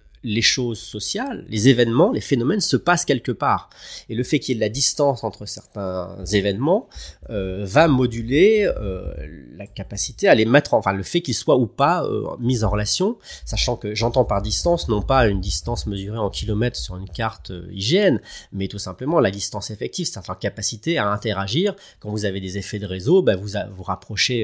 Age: 30-49